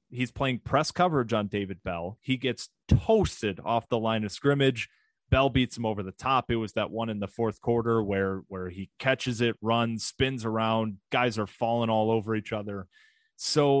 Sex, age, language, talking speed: male, 30-49, English, 195 wpm